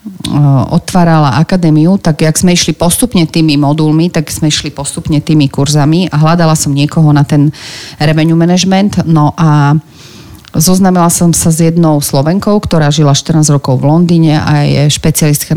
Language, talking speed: Slovak, 155 wpm